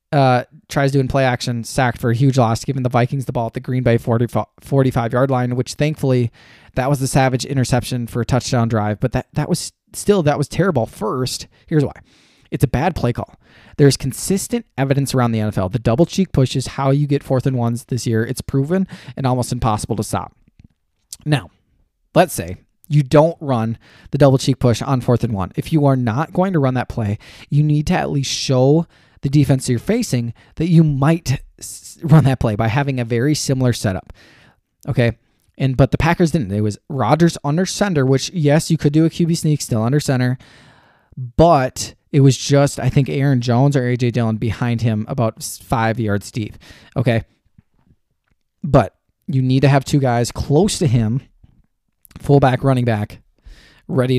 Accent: American